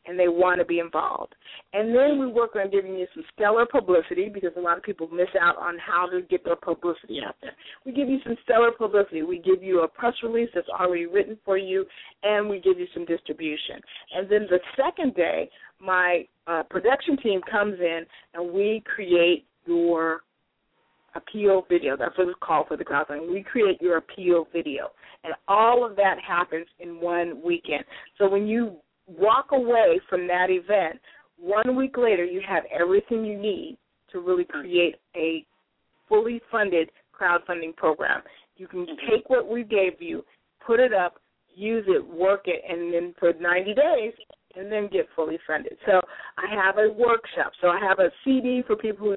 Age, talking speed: 40-59, 185 wpm